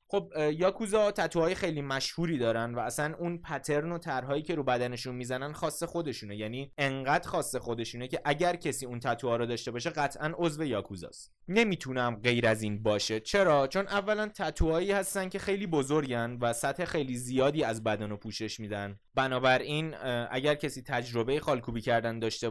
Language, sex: Persian, male